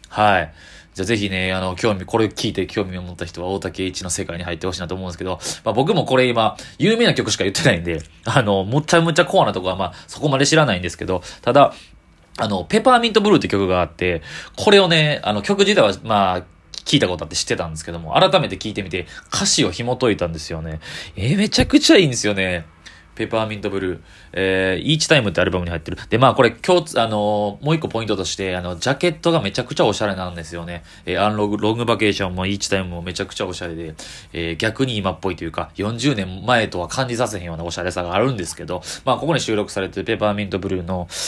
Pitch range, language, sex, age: 90-125 Hz, Japanese, male, 20-39